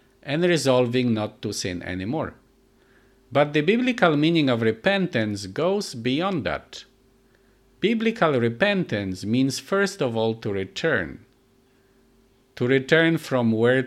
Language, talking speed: English, 115 wpm